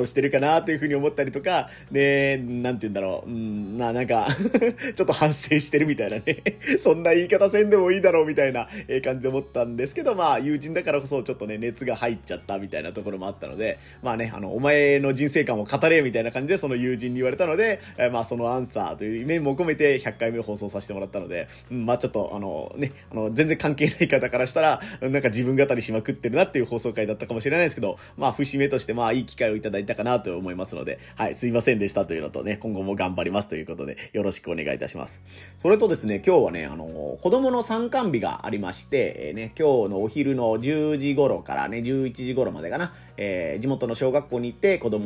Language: Japanese